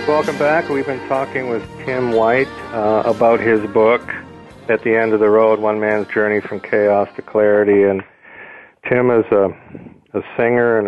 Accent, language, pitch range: American, English, 100-115 Hz